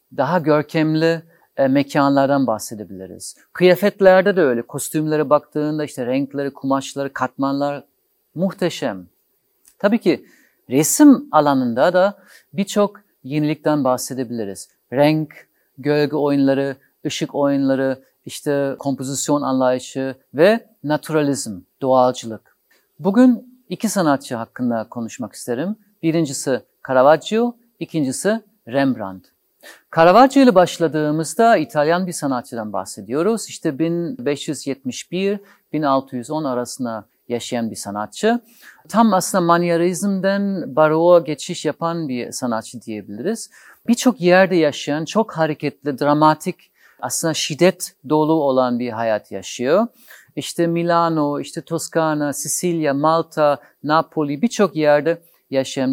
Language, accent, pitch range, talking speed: Turkish, native, 135-175 Hz, 95 wpm